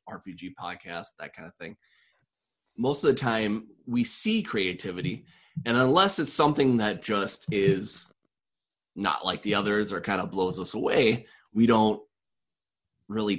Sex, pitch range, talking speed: male, 95-115 Hz, 150 wpm